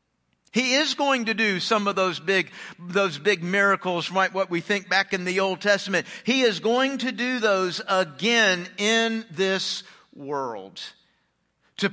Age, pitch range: 50-69, 175-210 Hz